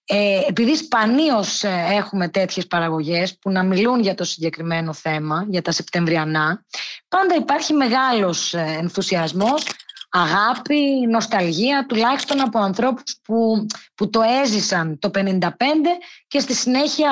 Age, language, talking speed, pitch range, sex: 20-39, Greek, 115 wpm, 195-280 Hz, female